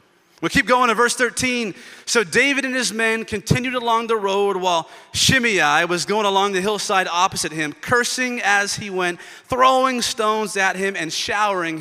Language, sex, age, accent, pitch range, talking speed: English, male, 30-49, American, 195-255 Hz, 175 wpm